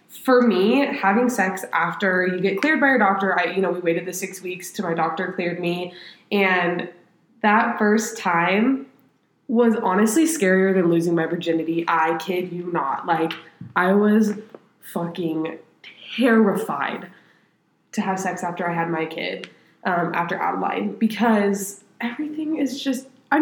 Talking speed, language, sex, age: 155 wpm, English, female, 20-39